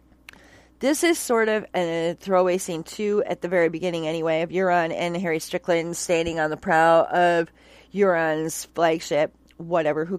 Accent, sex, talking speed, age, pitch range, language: American, female, 160 wpm, 40-59, 160-200 Hz, English